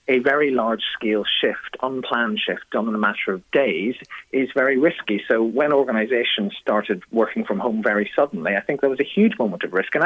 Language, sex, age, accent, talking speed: English, male, 40-59, British, 210 wpm